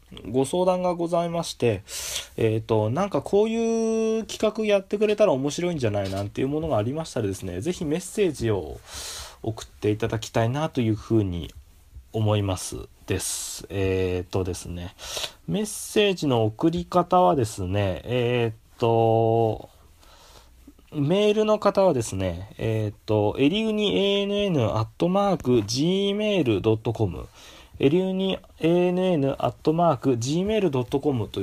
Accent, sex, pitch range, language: native, male, 105-175 Hz, Japanese